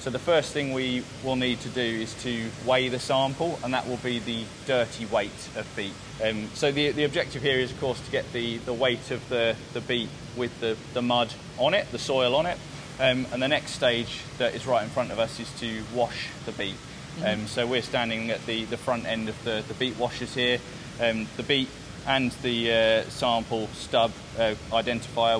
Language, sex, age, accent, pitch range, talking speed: English, male, 20-39, British, 110-130 Hz, 220 wpm